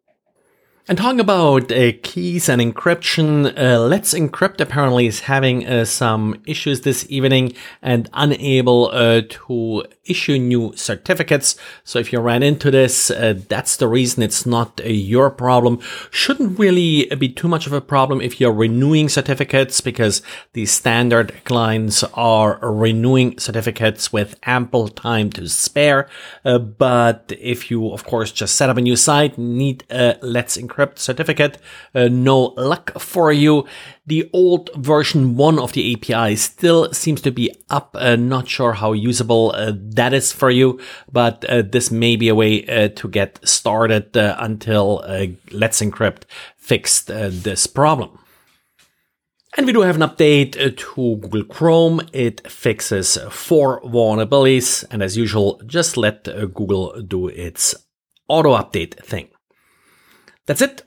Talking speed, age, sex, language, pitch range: 155 wpm, 40-59, male, English, 115-145 Hz